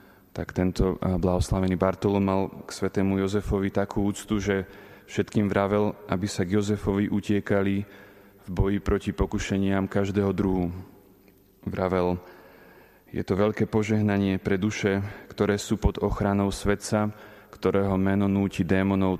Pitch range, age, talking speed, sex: 95-105 Hz, 30-49, 120 wpm, male